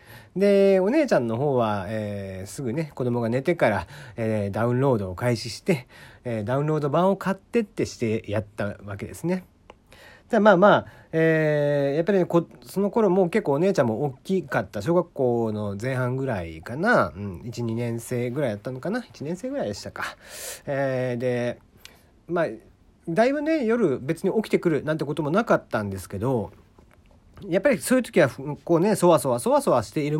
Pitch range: 110-165 Hz